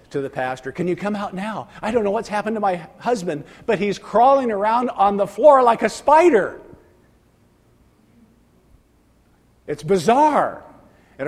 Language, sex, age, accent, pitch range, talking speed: English, male, 50-69, American, 110-155 Hz, 155 wpm